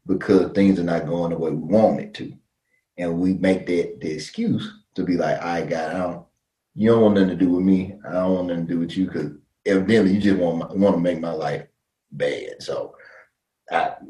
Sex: male